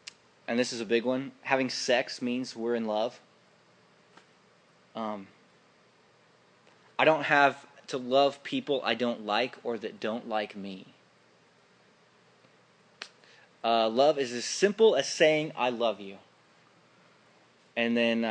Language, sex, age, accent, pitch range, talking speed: English, male, 20-39, American, 110-135 Hz, 130 wpm